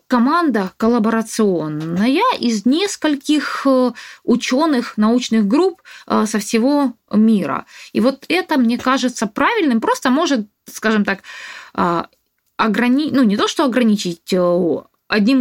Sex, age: female, 20-39